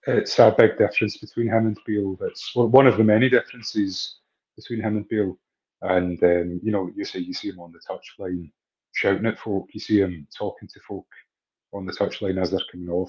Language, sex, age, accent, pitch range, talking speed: English, male, 30-49, British, 90-115 Hz, 210 wpm